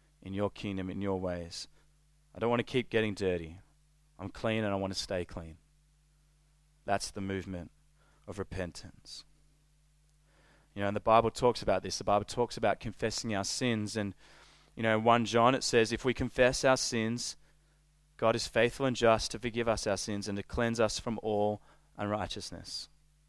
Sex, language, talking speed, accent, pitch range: male, English, 185 wpm, Australian, 105-150 Hz